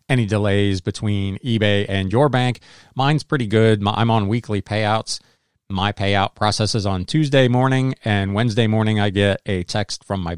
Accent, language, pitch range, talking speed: American, English, 100-125 Hz, 175 wpm